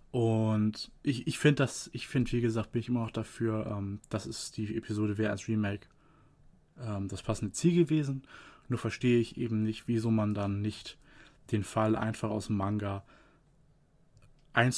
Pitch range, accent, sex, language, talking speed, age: 105-125 Hz, German, male, German, 170 wpm, 20-39